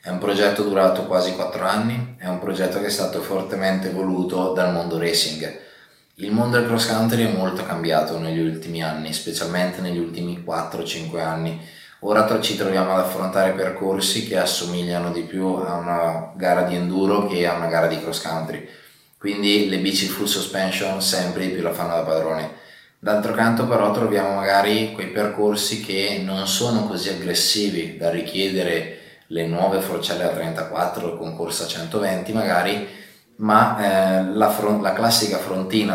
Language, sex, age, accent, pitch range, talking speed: Italian, male, 20-39, native, 85-100 Hz, 165 wpm